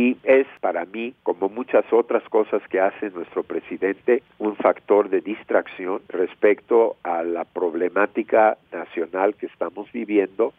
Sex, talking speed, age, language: male, 135 wpm, 50-69, Spanish